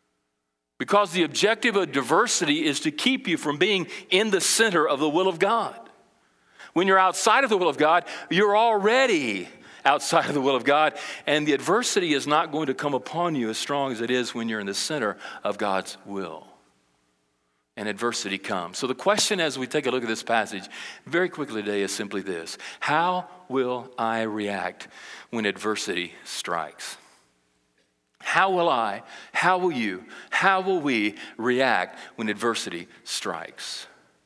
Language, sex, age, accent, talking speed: English, male, 40-59, American, 170 wpm